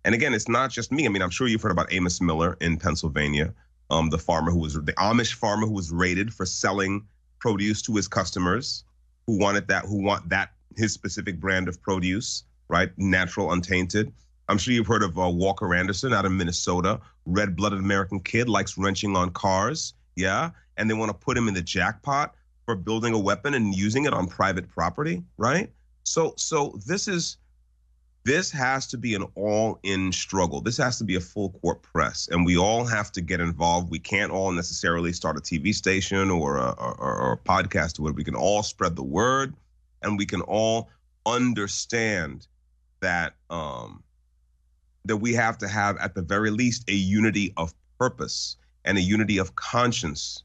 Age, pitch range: 30-49, 80-105 Hz